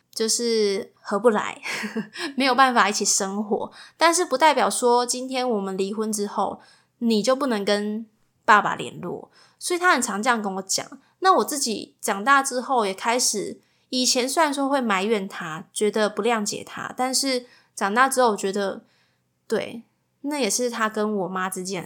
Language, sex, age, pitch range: Chinese, female, 20-39, 200-255 Hz